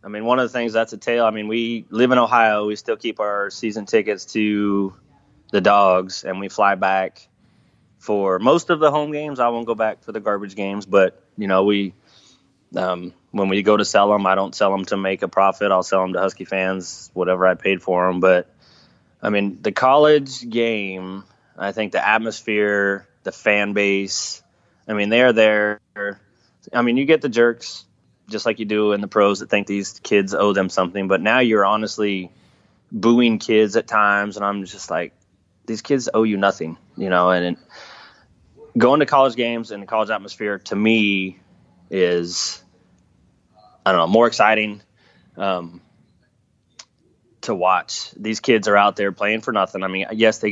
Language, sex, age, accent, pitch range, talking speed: English, male, 20-39, American, 95-110 Hz, 190 wpm